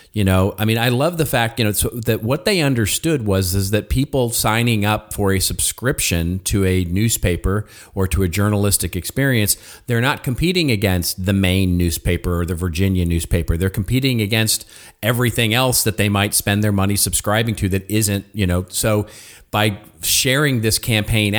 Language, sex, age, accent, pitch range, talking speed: English, male, 40-59, American, 90-110 Hz, 180 wpm